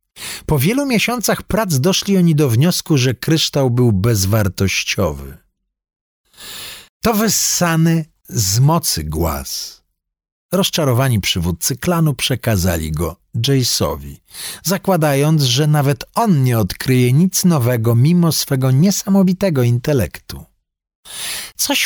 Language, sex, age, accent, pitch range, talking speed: Polish, male, 50-69, native, 95-160 Hz, 100 wpm